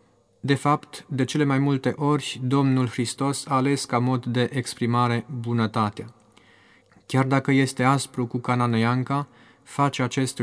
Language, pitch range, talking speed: Romanian, 115-140 Hz, 145 wpm